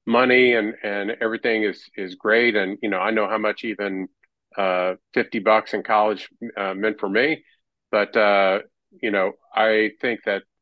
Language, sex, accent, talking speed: English, male, American, 175 wpm